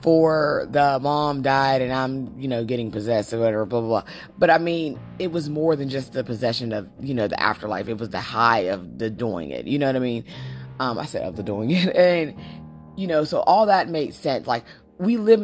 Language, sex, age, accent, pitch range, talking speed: English, female, 20-39, American, 120-165 Hz, 235 wpm